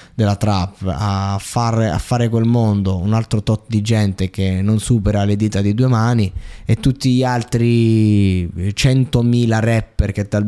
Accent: native